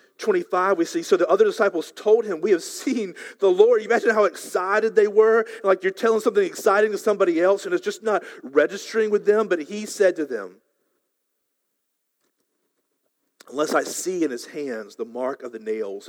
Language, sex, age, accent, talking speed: English, male, 40-59, American, 190 wpm